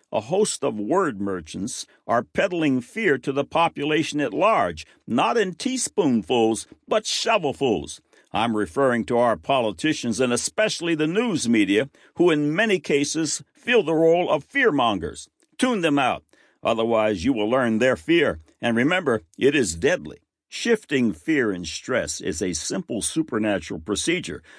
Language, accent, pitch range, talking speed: English, American, 115-180 Hz, 145 wpm